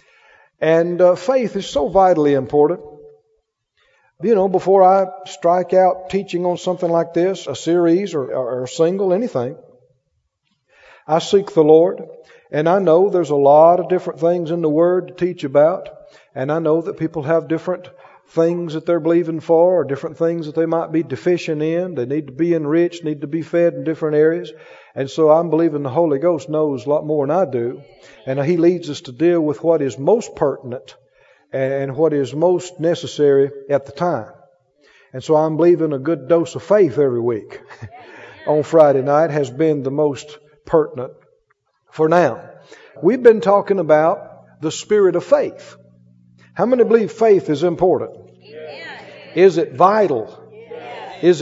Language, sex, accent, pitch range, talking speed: English, male, American, 150-180 Hz, 175 wpm